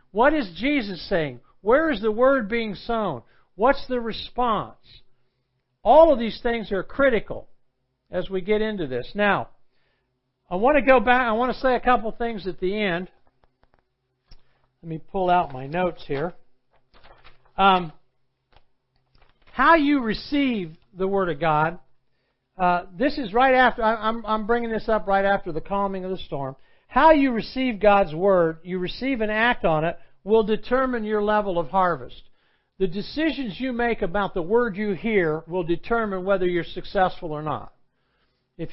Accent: American